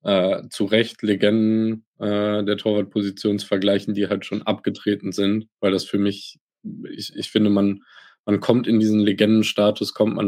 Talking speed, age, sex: 170 wpm, 20-39, male